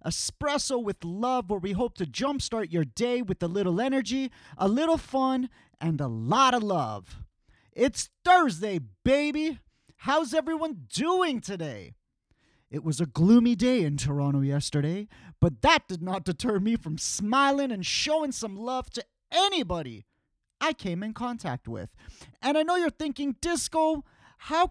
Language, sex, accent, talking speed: English, male, American, 155 wpm